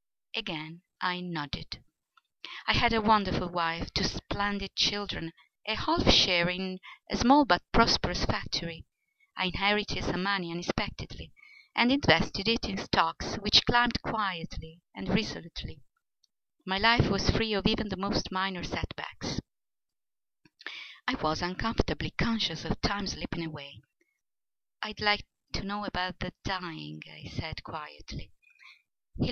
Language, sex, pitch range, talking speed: English, female, 175-220 Hz, 130 wpm